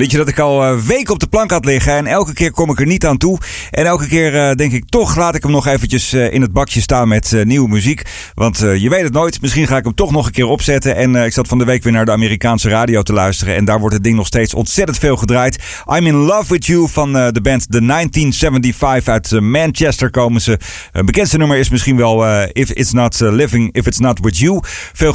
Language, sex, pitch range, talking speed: Dutch, male, 110-150 Hz, 250 wpm